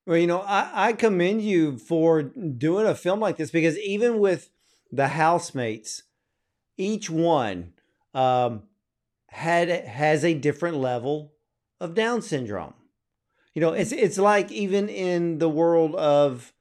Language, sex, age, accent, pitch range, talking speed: English, male, 50-69, American, 135-175 Hz, 140 wpm